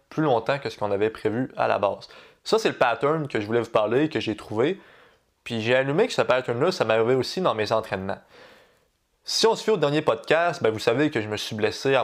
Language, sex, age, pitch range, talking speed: French, male, 20-39, 110-150 Hz, 250 wpm